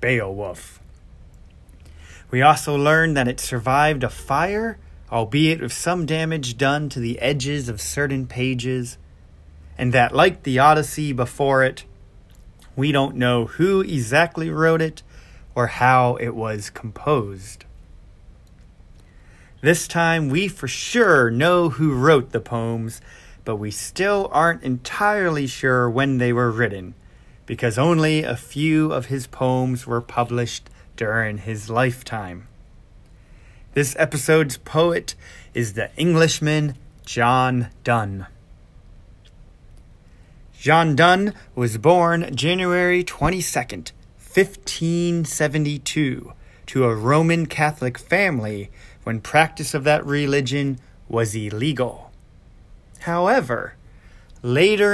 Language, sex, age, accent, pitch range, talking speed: English, male, 30-49, American, 110-155 Hz, 110 wpm